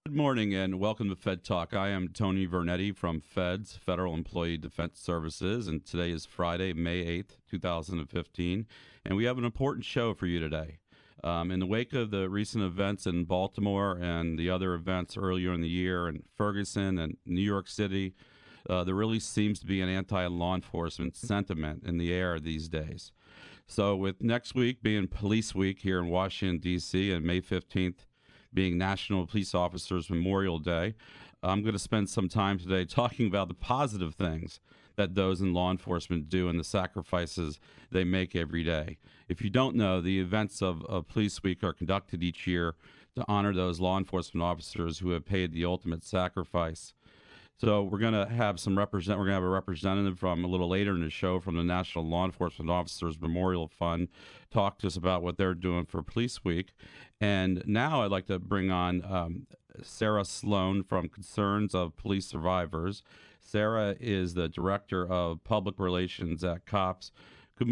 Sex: male